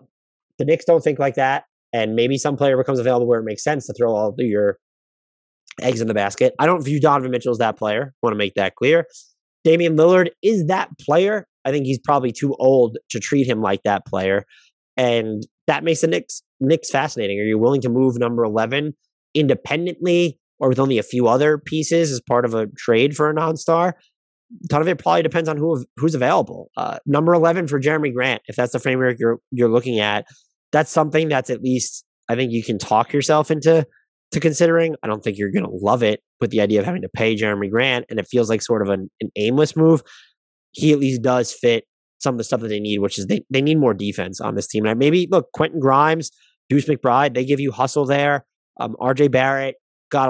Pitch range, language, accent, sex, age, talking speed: 115-155 Hz, English, American, male, 20-39, 220 wpm